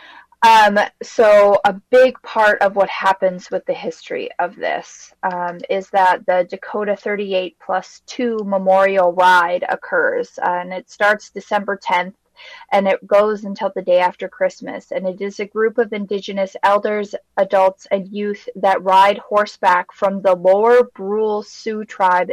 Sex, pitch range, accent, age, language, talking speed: female, 185-220 Hz, American, 20-39, English, 155 wpm